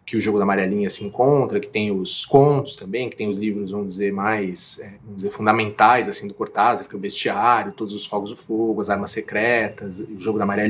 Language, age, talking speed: Portuguese, 20-39, 235 wpm